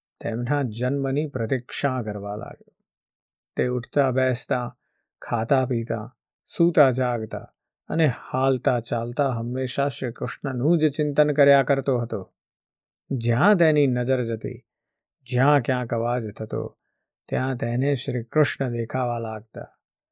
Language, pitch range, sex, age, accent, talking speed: Gujarati, 120-155 Hz, male, 50-69, native, 80 wpm